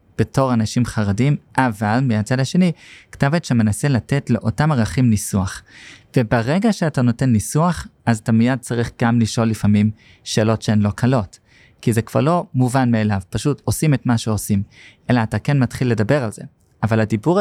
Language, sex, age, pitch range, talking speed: Hebrew, male, 20-39, 110-135 Hz, 165 wpm